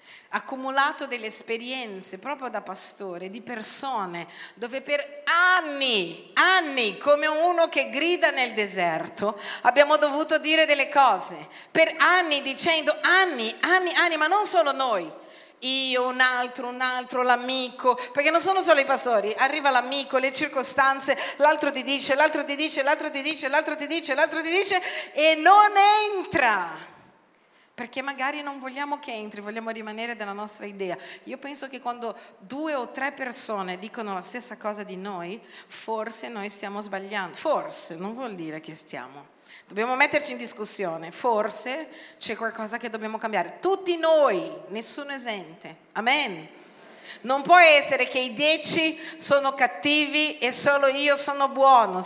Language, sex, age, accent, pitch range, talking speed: Italian, female, 40-59, native, 225-300 Hz, 155 wpm